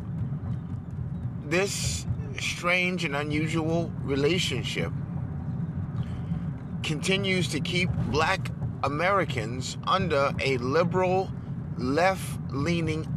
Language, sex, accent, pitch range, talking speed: English, male, American, 140-165 Hz, 65 wpm